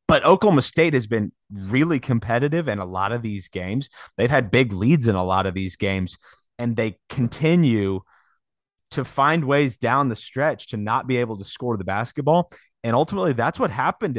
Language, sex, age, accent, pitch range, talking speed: English, male, 30-49, American, 105-135 Hz, 190 wpm